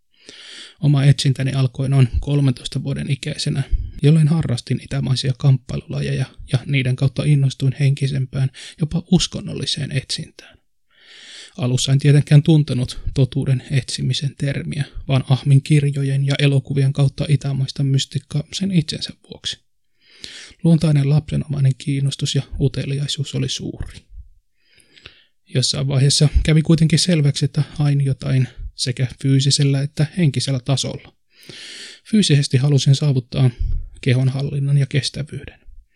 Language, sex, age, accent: Finnish, male, 20-39, native